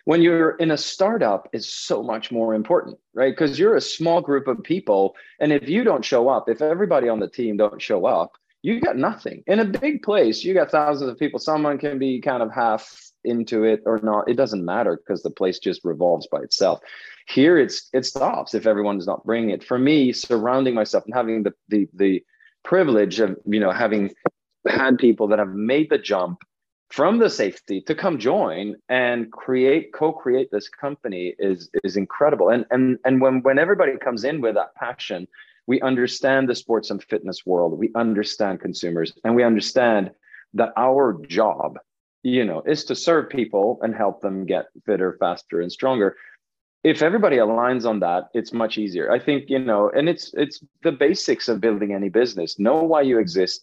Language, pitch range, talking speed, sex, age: English, 105-140 Hz, 195 wpm, male, 30-49